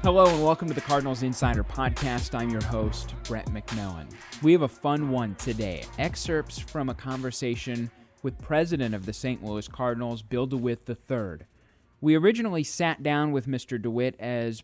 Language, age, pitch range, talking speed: English, 30-49, 110-140 Hz, 170 wpm